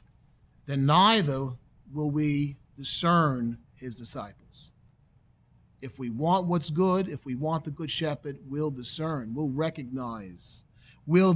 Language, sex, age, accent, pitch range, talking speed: English, male, 40-59, American, 140-190 Hz, 120 wpm